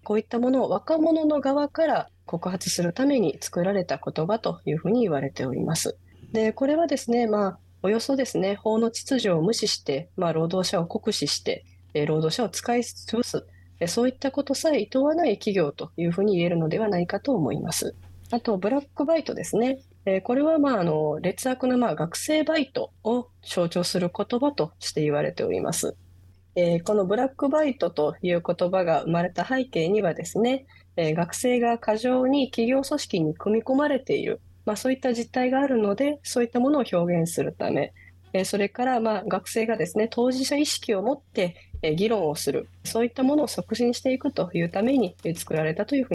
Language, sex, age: Japanese, female, 20-39